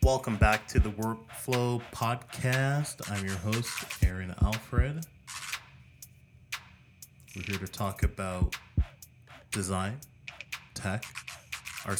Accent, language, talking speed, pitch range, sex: American, English, 95 wpm, 90-110 Hz, male